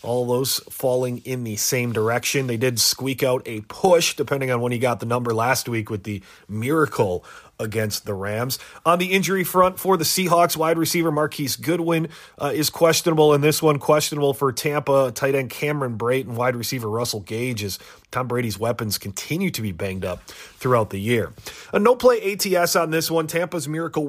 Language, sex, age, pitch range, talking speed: English, male, 30-49, 120-160 Hz, 190 wpm